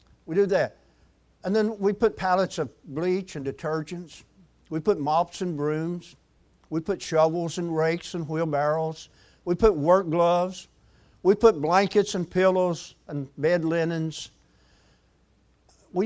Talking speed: 140 wpm